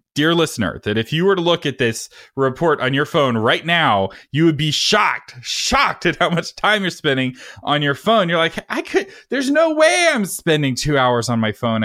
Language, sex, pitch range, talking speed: English, male, 115-165 Hz, 225 wpm